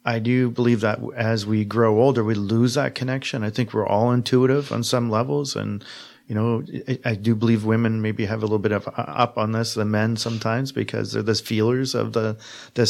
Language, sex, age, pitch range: English, male, 30-49, 105-120 Hz